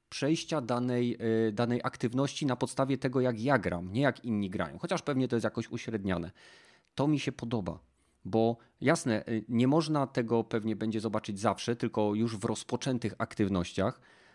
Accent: native